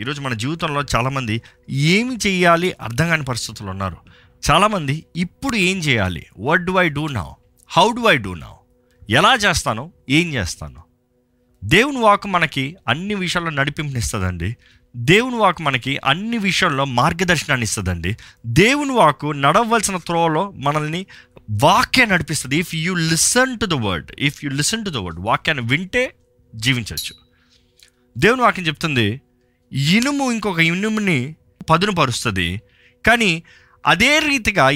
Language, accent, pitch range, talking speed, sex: Telugu, native, 120-195 Hz, 125 wpm, male